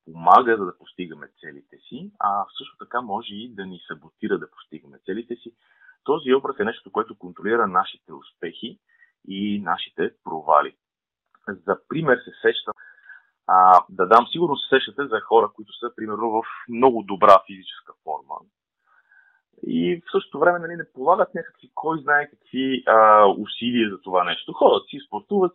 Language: Bulgarian